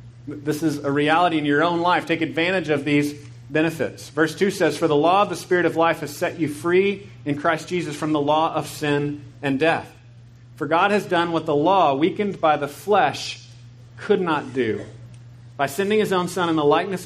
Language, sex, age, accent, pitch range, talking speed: English, male, 40-59, American, 140-175 Hz, 210 wpm